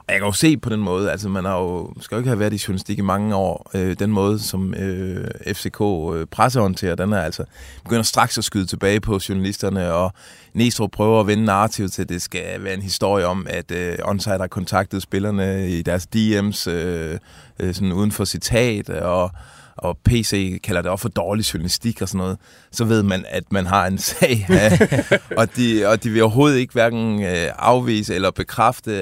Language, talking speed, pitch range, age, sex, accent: Danish, 205 wpm, 95-110 Hz, 20-39, male, native